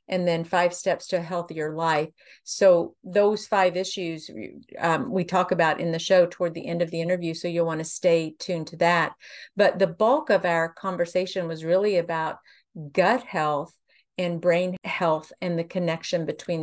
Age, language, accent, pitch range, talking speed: 50-69, English, American, 165-190 Hz, 185 wpm